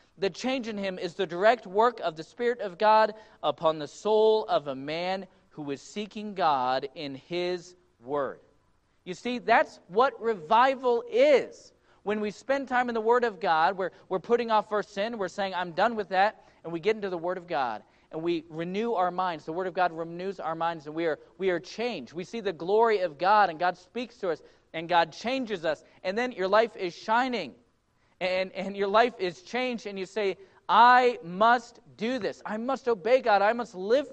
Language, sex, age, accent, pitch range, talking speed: English, male, 40-59, American, 175-225 Hz, 210 wpm